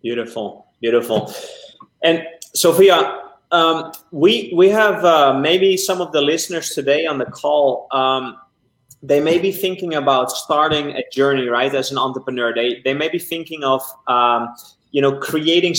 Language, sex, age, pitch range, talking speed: English, male, 30-49, 140-185 Hz, 155 wpm